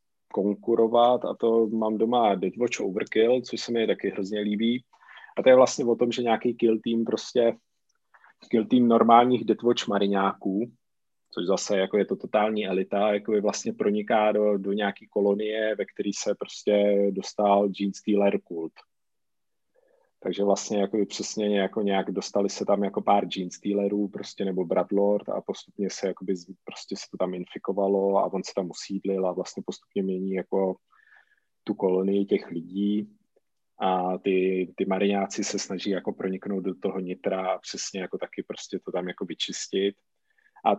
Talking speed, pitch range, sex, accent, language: 160 wpm, 100-115 Hz, male, native, Czech